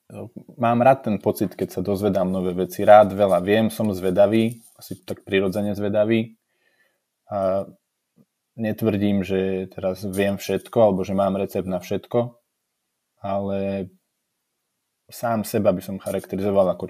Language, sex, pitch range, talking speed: Slovak, male, 95-110 Hz, 130 wpm